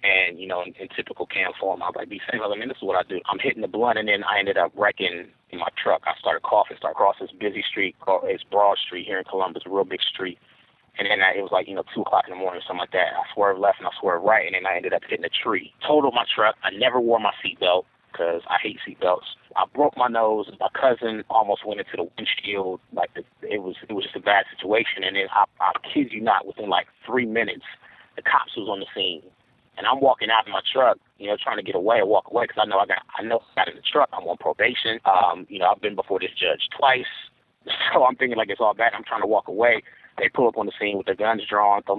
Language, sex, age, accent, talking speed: English, male, 30-49, American, 280 wpm